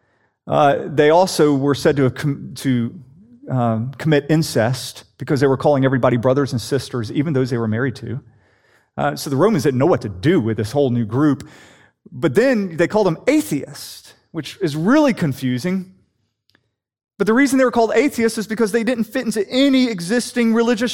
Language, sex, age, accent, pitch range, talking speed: English, male, 30-49, American, 125-200 Hz, 185 wpm